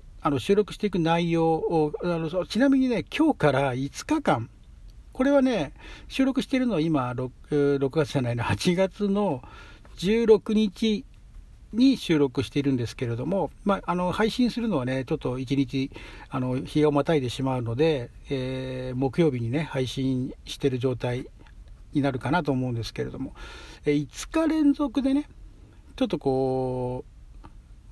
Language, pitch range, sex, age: Japanese, 130-195 Hz, male, 60-79